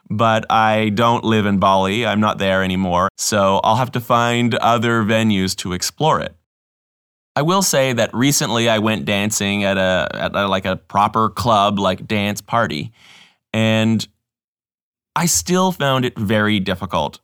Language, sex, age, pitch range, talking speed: English, male, 20-39, 100-120 Hz, 160 wpm